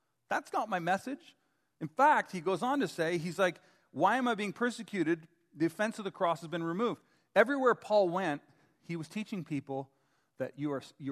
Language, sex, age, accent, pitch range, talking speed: English, male, 40-59, American, 130-170 Hz, 190 wpm